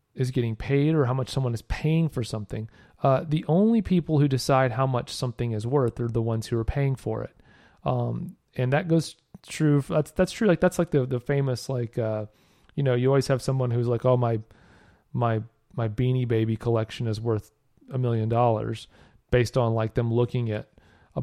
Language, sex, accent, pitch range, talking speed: English, male, American, 115-145 Hz, 205 wpm